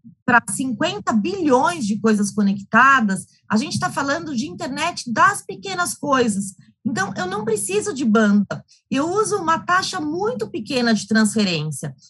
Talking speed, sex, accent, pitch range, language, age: 145 wpm, female, Brazilian, 220-315 Hz, English, 20-39